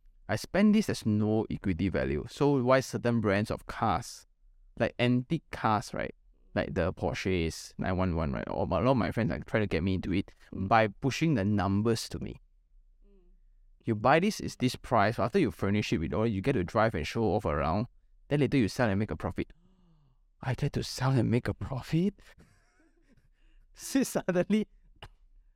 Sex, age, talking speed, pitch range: male, 20-39, 185 wpm, 90-130 Hz